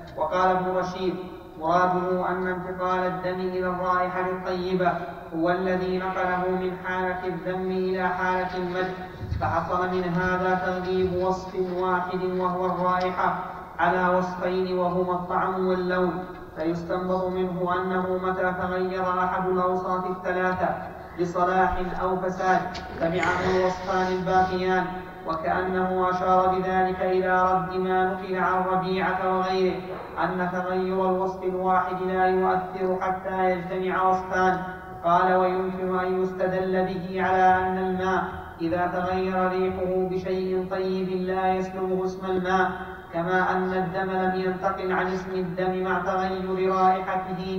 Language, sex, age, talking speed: Arabic, male, 30-49, 115 wpm